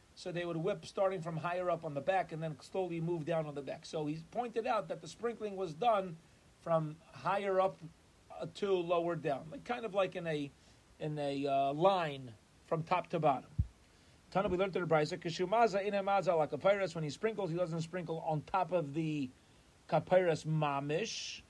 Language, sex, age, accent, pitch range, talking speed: English, male, 40-59, American, 155-195 Hz, 180 wpm